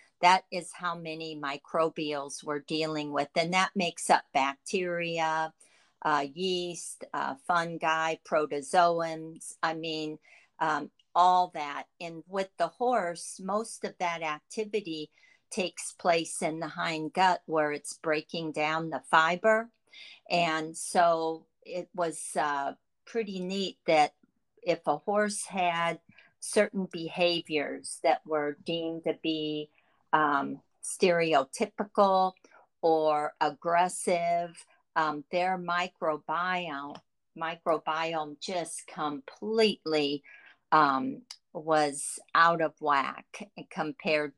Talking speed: 105 wpm